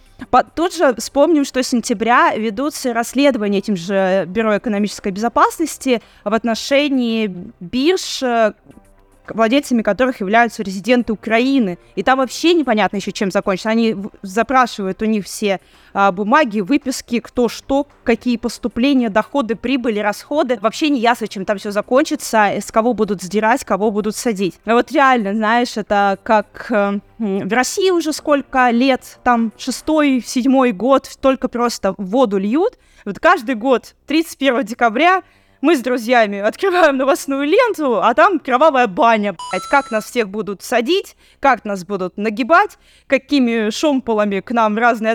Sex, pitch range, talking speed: female, 215-275 Hz, 140 wpm